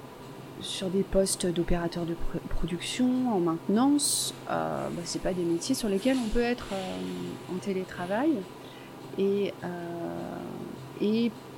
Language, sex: French, female